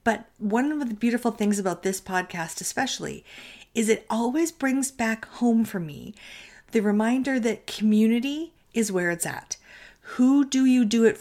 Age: 40-59